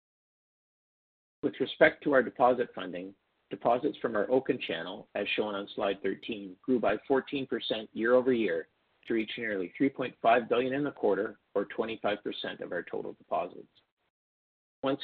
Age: 50-69